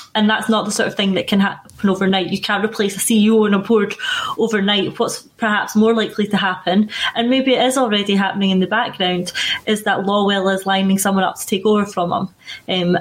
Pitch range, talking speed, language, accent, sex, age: 195-230 Hz, 220 wpm, English, British, female, 20-39